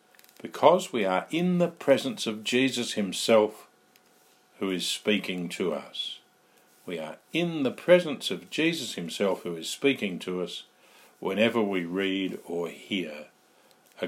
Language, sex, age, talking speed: English, male, 50-69, 140 wpm